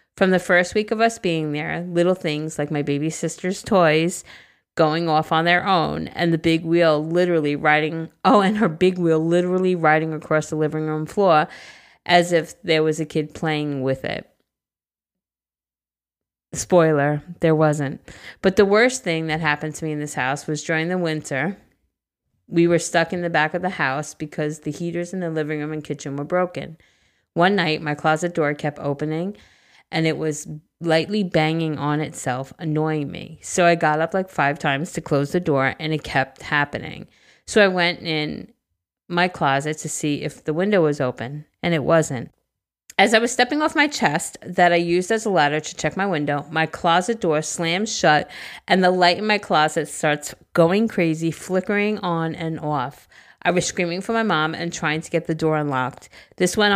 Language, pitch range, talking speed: English, 150-180 Hz, 190 wpm